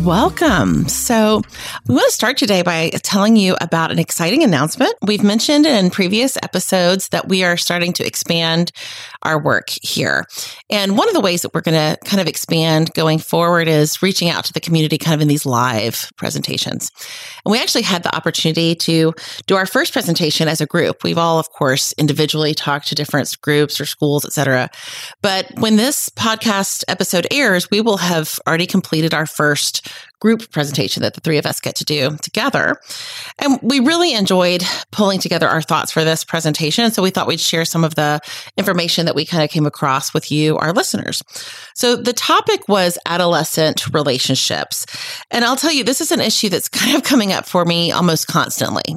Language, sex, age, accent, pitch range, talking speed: English, female, 30-49, American, 155-215 Hz, 195 wpm